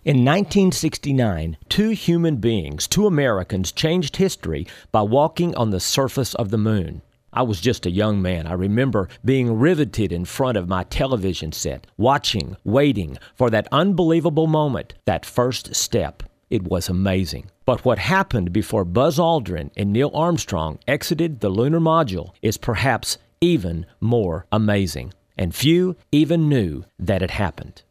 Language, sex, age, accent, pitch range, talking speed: English, male, 50-69, American, 100-150 Hz, 150 wpm